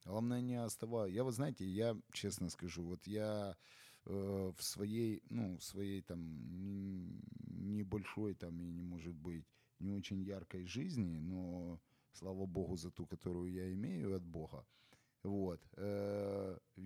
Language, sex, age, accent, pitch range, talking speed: Ukrainian, male, 30-49, native, 90-110 Hz, 135 wpm